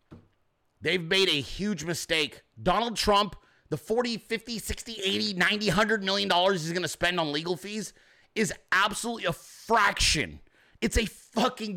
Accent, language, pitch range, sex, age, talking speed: American, English, 145-210 Hz, male, 30-49, 155 wpm